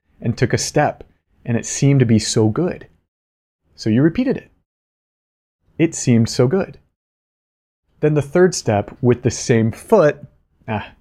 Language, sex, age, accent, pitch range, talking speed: English, male, 30-49, American, 85-135 Hz, 155 wpm